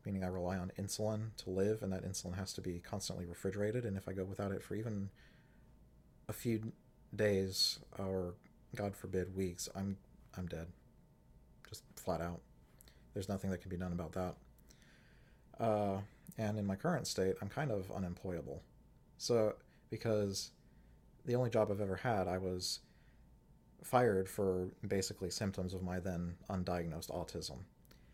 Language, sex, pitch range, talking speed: English, male, 90-105 Hz, 155 wpm